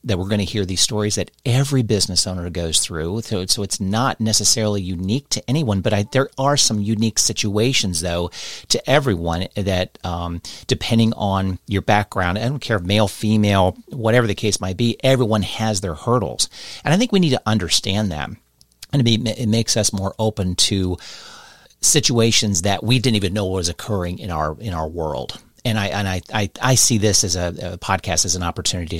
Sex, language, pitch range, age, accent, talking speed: male, English, 95-115 Hz, 40-59, American, 200 wpm